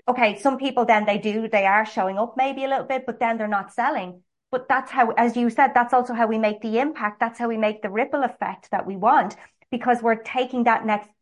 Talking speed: 250 wpm